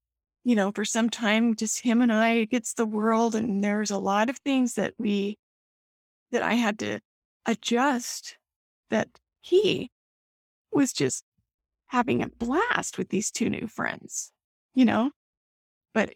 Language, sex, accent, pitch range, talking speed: English, female, American, 210-250 Hz, 150 wpm